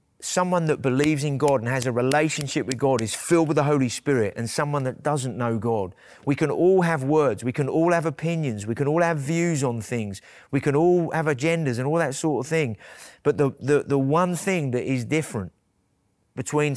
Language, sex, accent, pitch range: English, male, British, 135-170 Hz